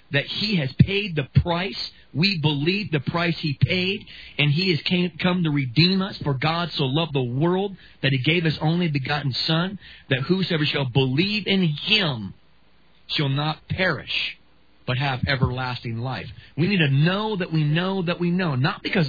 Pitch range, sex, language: 140-180 Hz, male, English